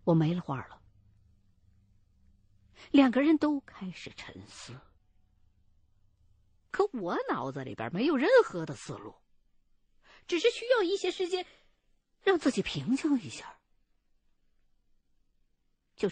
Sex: female